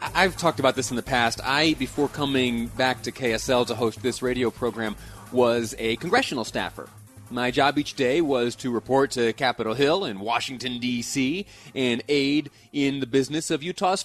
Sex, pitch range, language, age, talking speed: male, 115-140 Hz, English, 30-49, 180 wpm